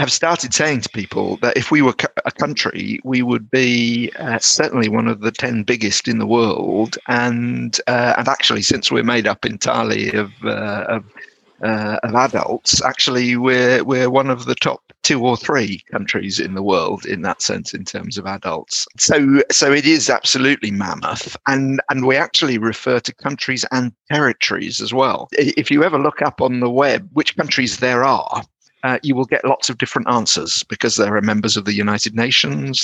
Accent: British